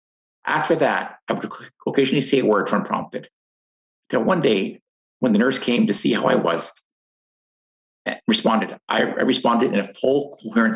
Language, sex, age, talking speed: English, male, 50-69, 160 wpm